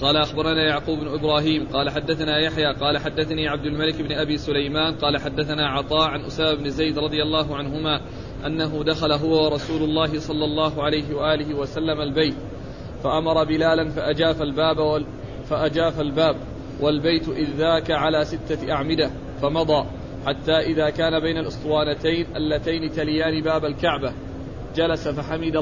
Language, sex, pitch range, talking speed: Arabic, male, 150-160 Hz, 140 wpm